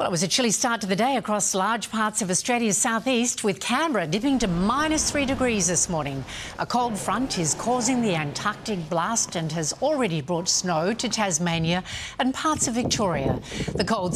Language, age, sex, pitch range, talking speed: English, 60-79, female, 170-225 Hz, 190 wpm